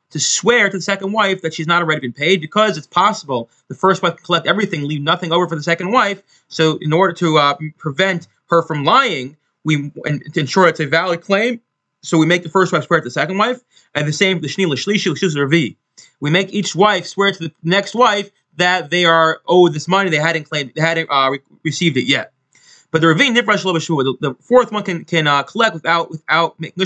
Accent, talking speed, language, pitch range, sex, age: American, 215 wpm, English, 155-195 Hz, male, 30-49